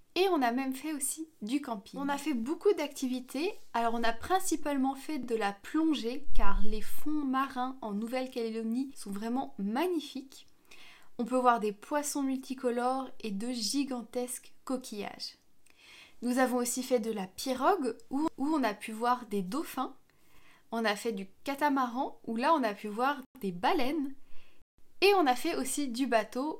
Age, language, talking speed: 20-39, French, 165 wpm